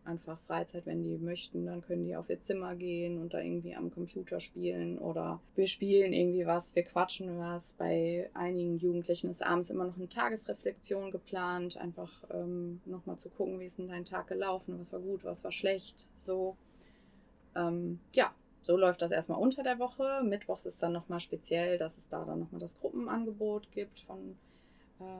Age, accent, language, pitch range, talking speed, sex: 20-39, German, German, 165-190 Hz, 185 wpm, female